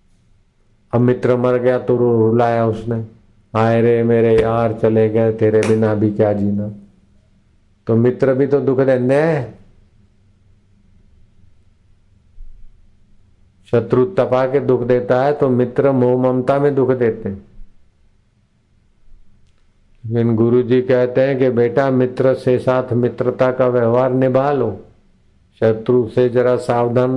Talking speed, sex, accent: 130 wpm, male, native